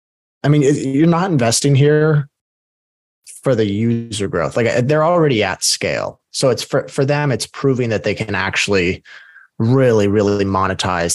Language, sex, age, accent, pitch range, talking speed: English, male, 20-39, American, 95-125 Hz, 155 wpm